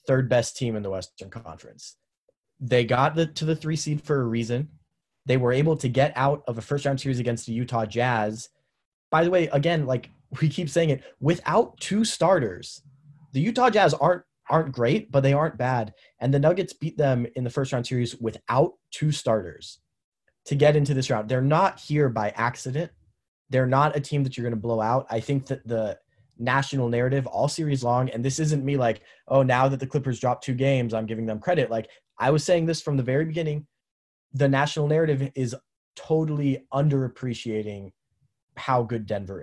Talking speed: 200 wpm